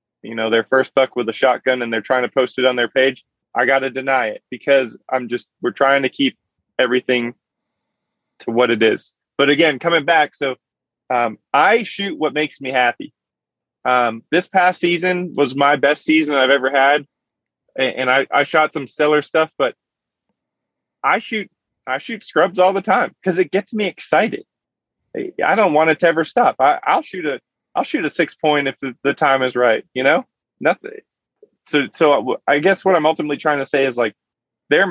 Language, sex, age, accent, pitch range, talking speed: English, male, 20-39, American, 130-170 Hz, 200 wpm